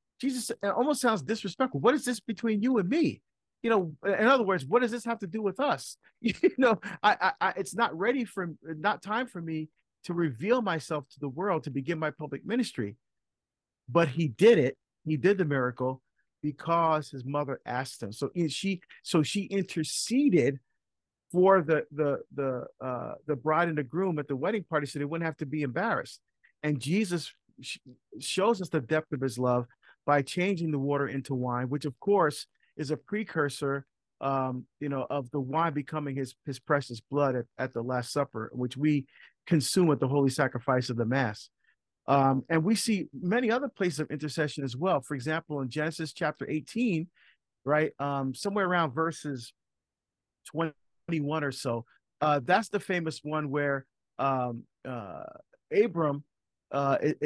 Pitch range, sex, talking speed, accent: 135-190 Hz, male, 180 wpm, American